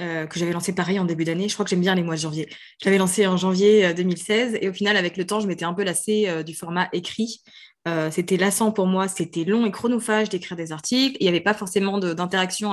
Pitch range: 180-220 Hz